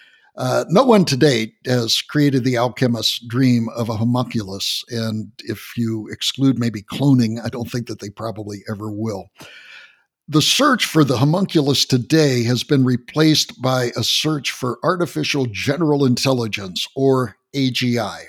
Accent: American